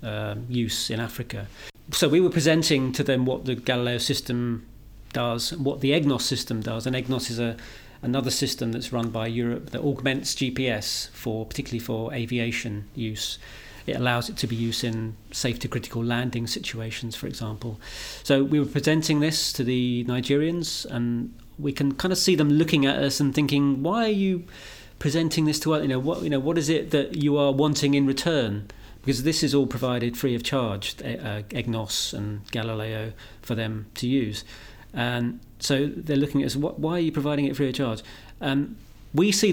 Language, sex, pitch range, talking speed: English, male, 115-145 Hz, 190 wpm